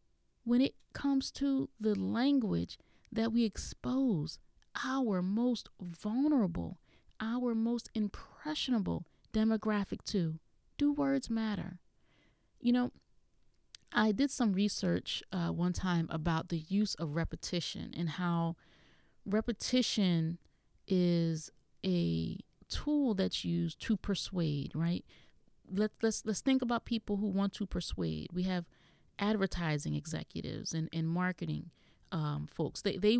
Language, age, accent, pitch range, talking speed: English, 30-49, American, 170-230 Hz, 120 wpm